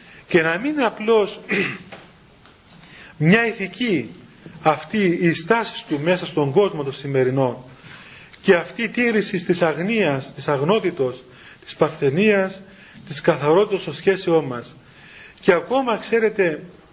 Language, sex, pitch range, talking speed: Greek, male, 160-205 Hz, 120 wpm